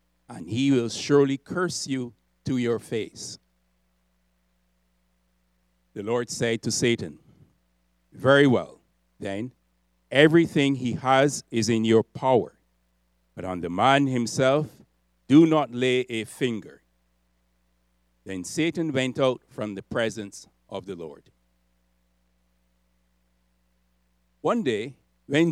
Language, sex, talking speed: English, male, 110 wpm